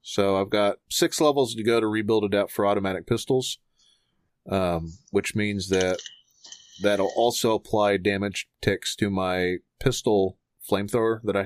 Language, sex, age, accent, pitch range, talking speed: English, male, 30-49, American, 95-120 Hz, 145 wpm